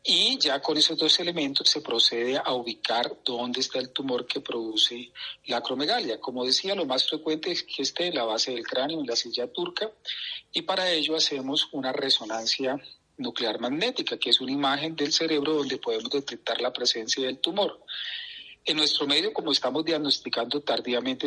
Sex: male